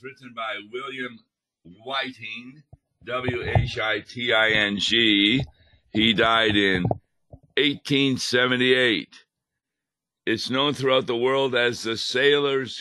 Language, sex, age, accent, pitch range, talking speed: English, male, 60-79, American, 105-125 Hz, 80 wpm